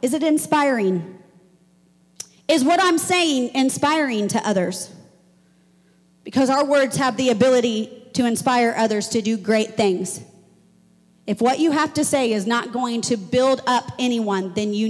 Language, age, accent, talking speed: English, 40-59, American, 155 wpm